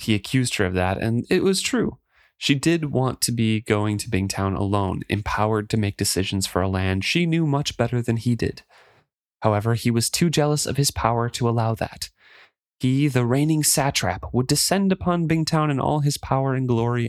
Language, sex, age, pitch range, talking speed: English, male, 30-49, 105-145 Hz, 200 wpm